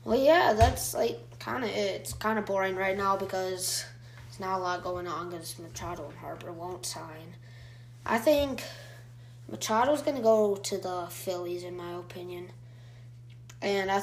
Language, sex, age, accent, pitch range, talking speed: English, female, 20-39, American, 120-200 Hz, 165 wpm